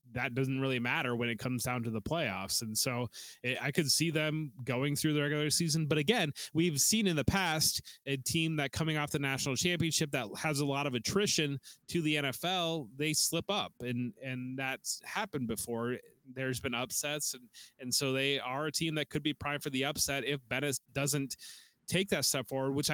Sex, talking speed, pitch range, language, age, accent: male, 210 wpm, 125-150 Hz, English, 20-39, American